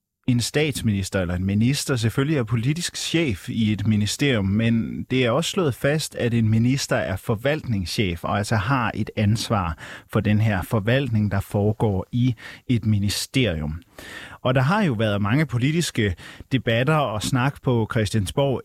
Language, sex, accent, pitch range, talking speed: Danish, male, native, 105-135 Hz, 160 wpm